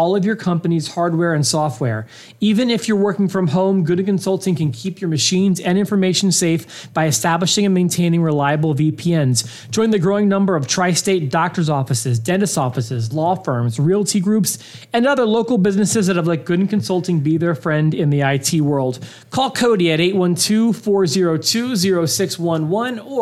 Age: 30-49